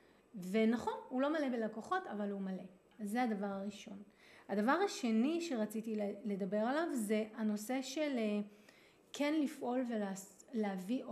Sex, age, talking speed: female, 30-49, 120 wpm